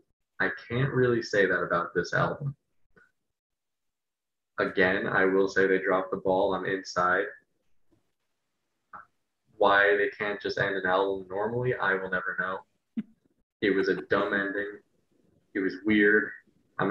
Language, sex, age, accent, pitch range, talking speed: English, male, 20-39, American, 95-115 Hz, 140 wpm